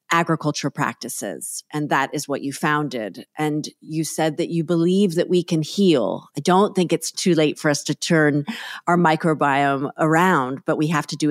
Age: 40-59